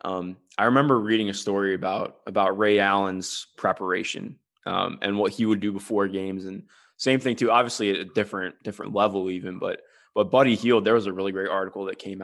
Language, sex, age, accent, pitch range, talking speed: English, male, 20-39, American, 95-115 Hz, 205 wpm